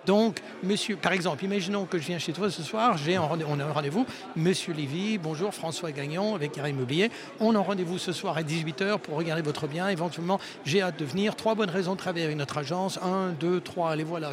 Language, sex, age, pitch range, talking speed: French, male, 60-79, 160-215 Hz, 240 wpm